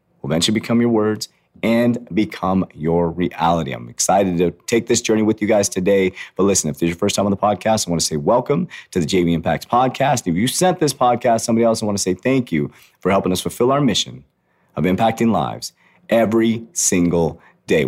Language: English